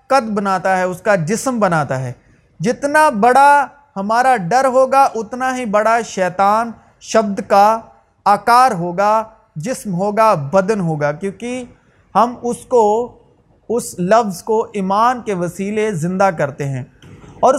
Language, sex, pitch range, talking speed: Urdu, male, 195-260 Hz, 135 wpm